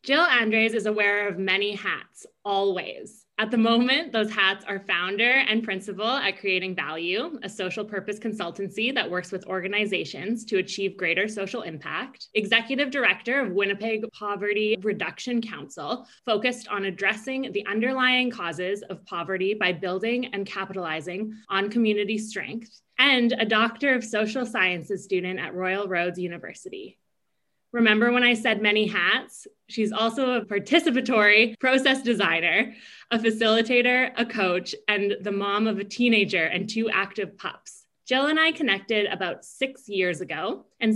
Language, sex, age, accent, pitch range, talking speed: English, female, 20-39, American, 195-235 Hz, 150 wpm